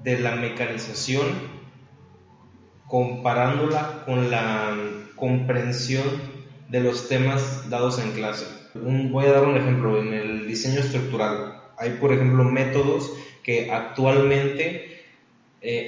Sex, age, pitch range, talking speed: male, 30-49, 115-130 Hz, 115 wpm